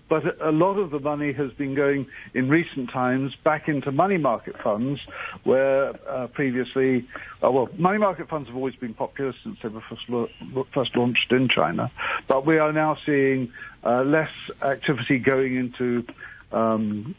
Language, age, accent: English, 60-79, British